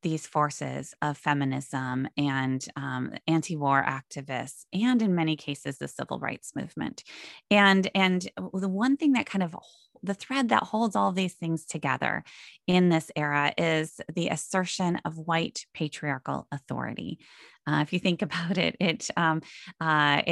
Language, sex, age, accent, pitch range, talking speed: English, female, 20-39, American, 145-180 Hz, 150 wpm